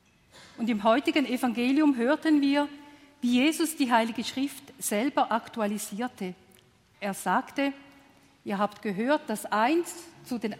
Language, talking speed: German, 125 wpm